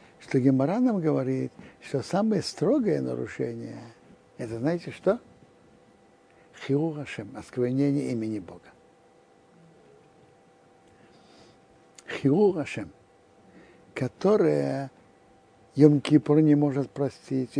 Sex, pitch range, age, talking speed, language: male, 125-160 Hz, 60-79, 65 wpm, Russian